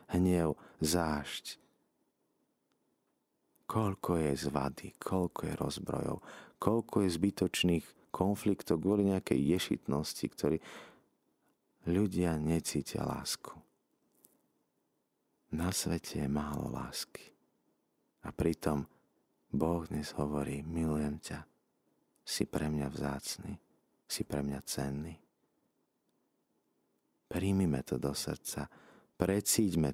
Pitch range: 75-95 Hz